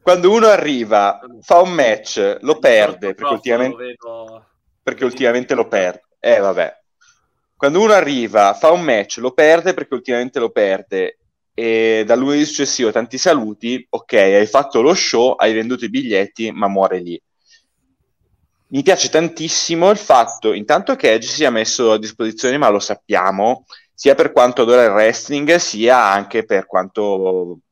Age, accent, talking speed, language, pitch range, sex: 30-49, native, 155 wpm, Italian, 100-145 Hz, male